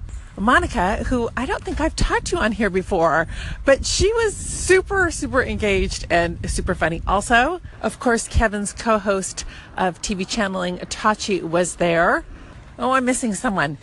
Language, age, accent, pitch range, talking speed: English, 40-59, American, 165-230 Hz, 150 wpm